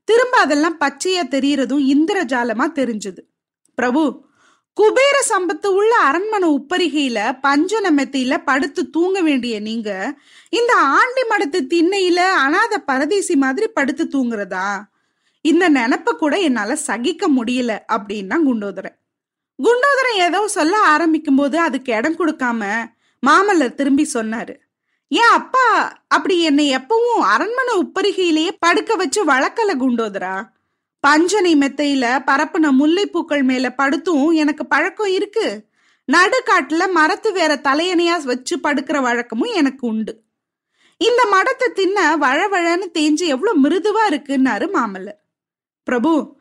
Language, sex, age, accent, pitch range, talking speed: Tamil, female, 20-39, native, 265-370 Hz, 105 wpm